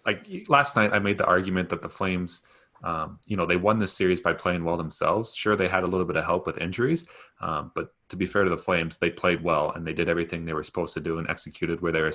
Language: English